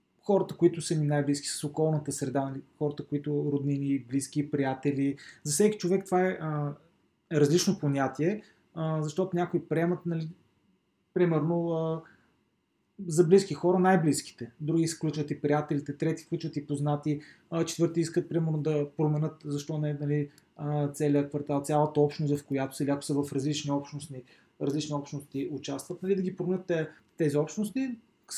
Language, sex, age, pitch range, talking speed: Bulgarian, male, 20-39, 145-180 Hz, 150 wpm